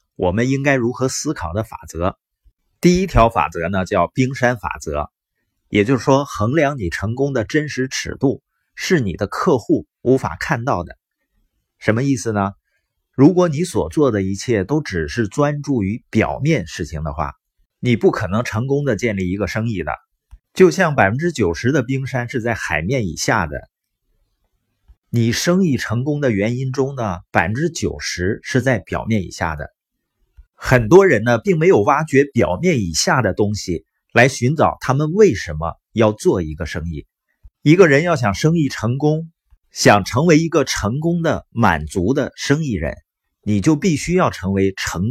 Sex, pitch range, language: male, 95-140 Hz, Chinese